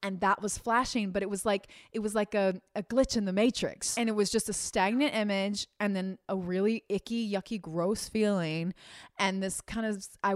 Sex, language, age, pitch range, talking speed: female, English, 20-39, 185-240 Hz, 215 wpm